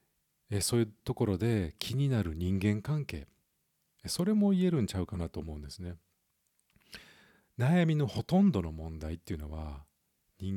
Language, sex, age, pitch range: Japanese, male, 50-69, 85-120 Hz